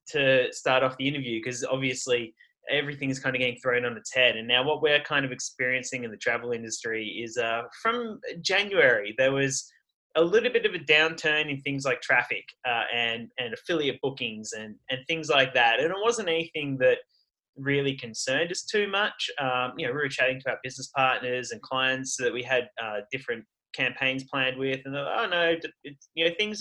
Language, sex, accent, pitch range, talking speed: English, male, Australian, 125-150 Hz, 205 wpm